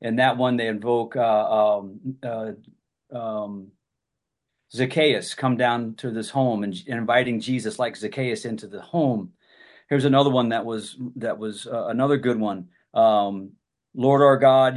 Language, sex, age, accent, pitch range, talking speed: English, male, 40-59, American, 120-140 Hz, 160 wpm